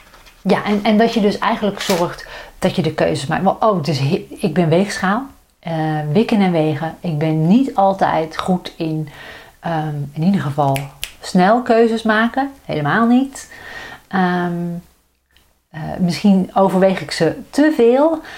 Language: Dutch